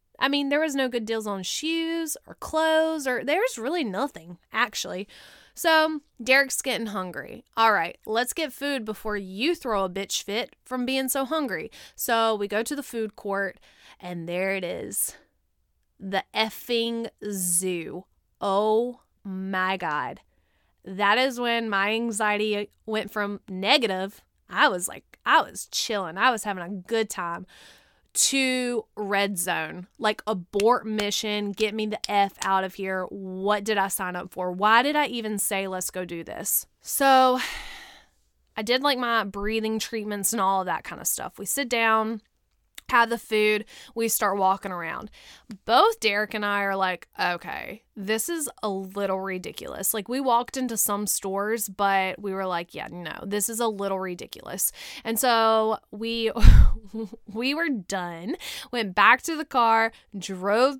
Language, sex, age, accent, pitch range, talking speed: English, female, 20-39, American, 195-240 Hz, 165 wpm